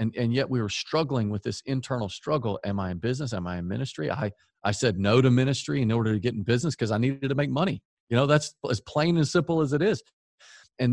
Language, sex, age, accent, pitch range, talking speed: English, male, 40-59, American, 105-130 Hz, 260 wpm